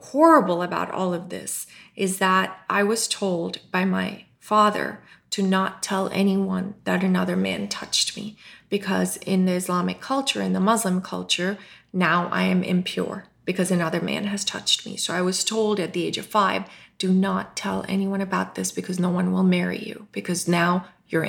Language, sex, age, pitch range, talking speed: English, female, 30-49, 180-205 Hz, 185 wpm